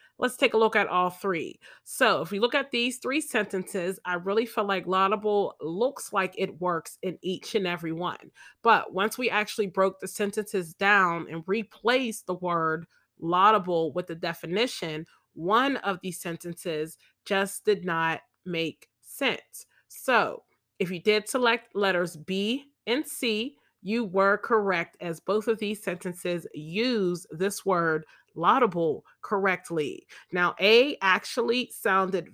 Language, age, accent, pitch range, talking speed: English, 30-49, American, 175-215 Hz, 150 wpm